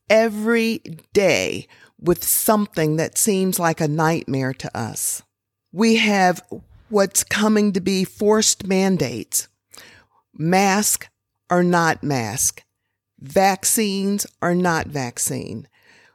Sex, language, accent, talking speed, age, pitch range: female, English, American, 100 wpm, 50-69, 160-215 Hz